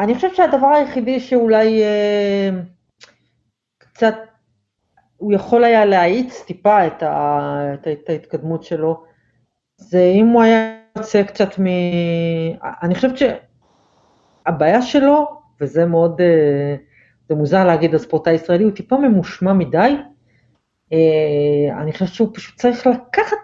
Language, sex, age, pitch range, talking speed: Hebrew, female, 40-59, 160-225 Hz, 120 wpm